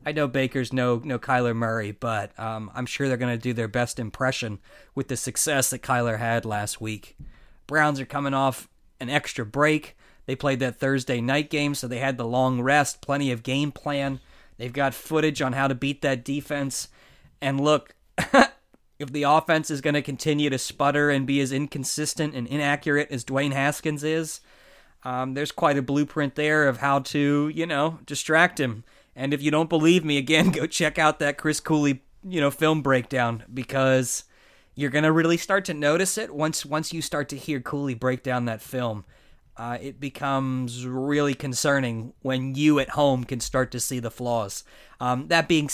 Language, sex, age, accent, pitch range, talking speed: English, male, 20-39, American, 125-150 Hz, 195 wpm